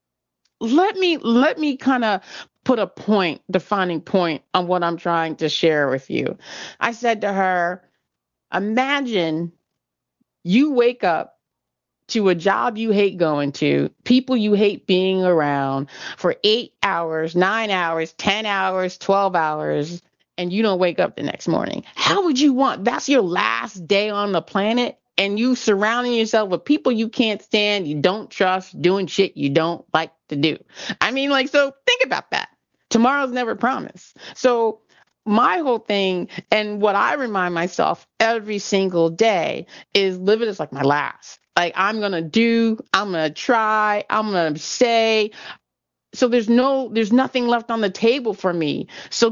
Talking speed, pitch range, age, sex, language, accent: 170 wpm, 180-240 Hz, 30-49, female, English, American